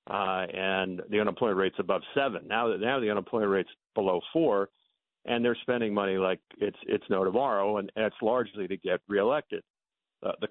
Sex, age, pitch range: male, 50-69, 95-115 Hz